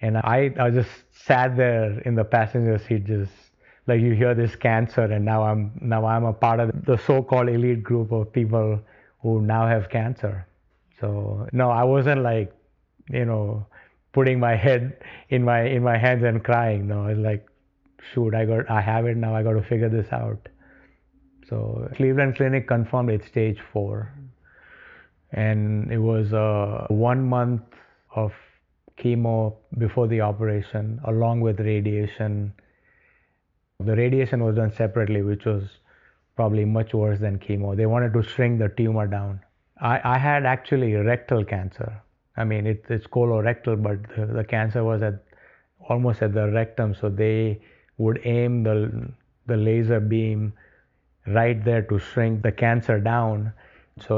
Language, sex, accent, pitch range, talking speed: English, male, Indian, 105-120 Hz, 160 wpm